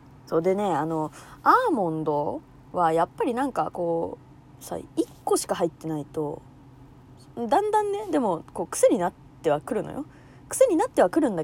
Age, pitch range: 20-39, 145-230 Hz